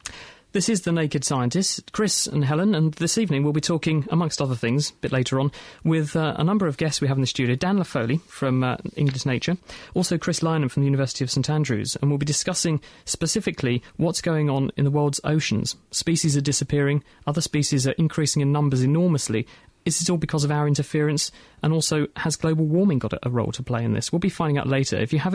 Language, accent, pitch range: English, British, 135-165 Hz